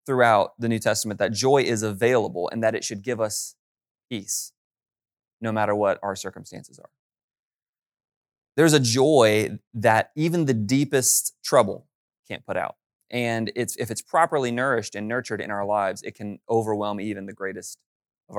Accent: American